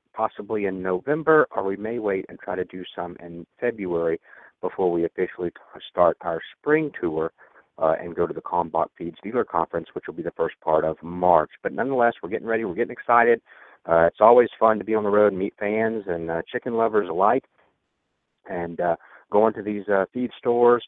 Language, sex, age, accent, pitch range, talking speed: English, male, 50-69, American, 90-115 Hz, 205 wpm